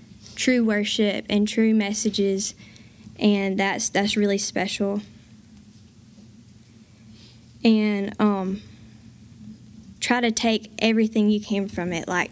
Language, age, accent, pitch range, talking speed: English, 10-29, American, 200-230 Hz, 100 wpm